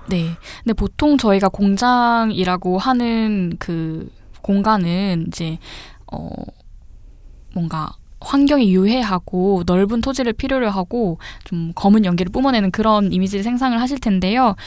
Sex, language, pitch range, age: female, Korean, 180-240 Hz, 10-29